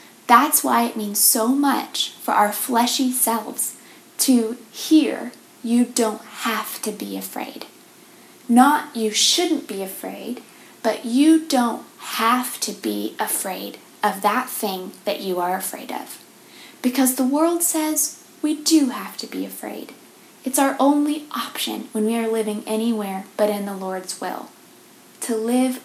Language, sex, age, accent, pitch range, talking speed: English, female, 20-39, American, 210-260 Hz, 150 wpm